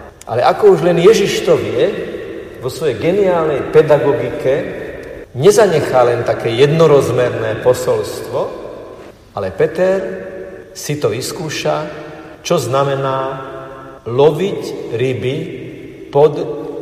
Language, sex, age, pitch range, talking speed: Slovak, male, 50-69, 120-155 Hz, 95 wpm